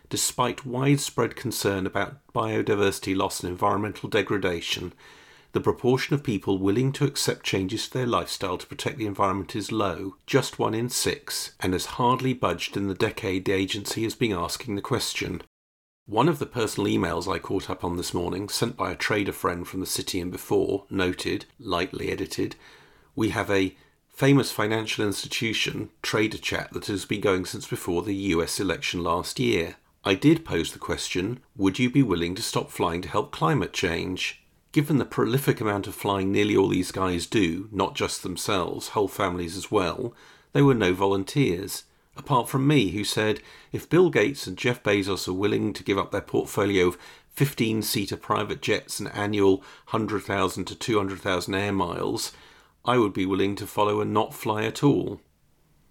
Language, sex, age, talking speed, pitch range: English, male, 40-59, 175 wpm, 95-125 Hz